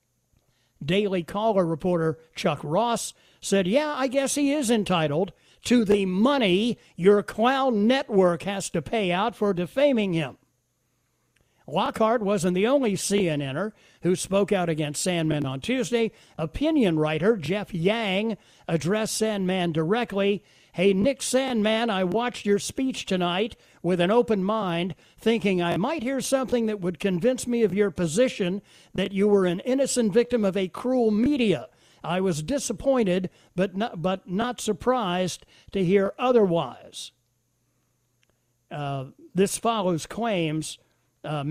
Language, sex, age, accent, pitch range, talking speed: English, male, 60-79, American, 165-225 Hz, 135 wpm